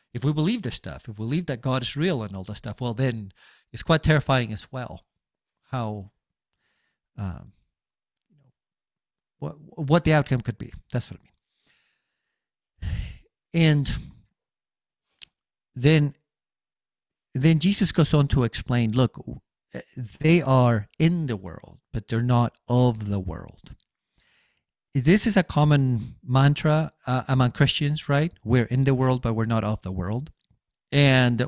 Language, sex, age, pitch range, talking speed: English, male, 50-69, 115-150 Hz, 145 wpm